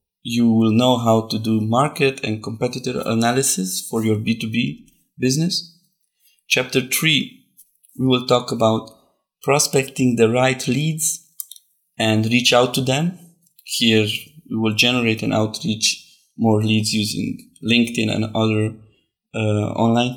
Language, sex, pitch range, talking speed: English, male, 110-140 Hz, 130 wpm